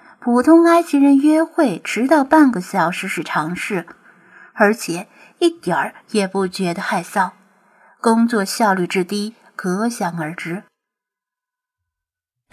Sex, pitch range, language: female, 190-275 Hz, Chinese